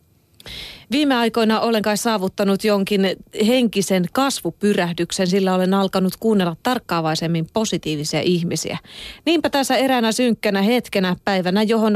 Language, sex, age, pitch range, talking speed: Finnish, female, 30-49, 185-240 Hz, 110 wpm